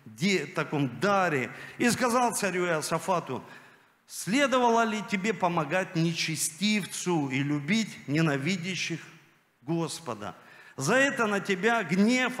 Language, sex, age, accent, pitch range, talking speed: Russian, male, 50-69, native, 180-240 Hz, 95 wpm